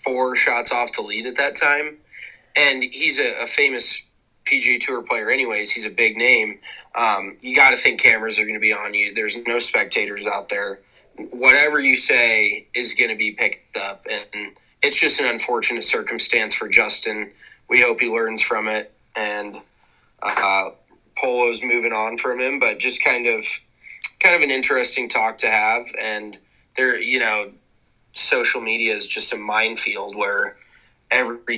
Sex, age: male, 20-39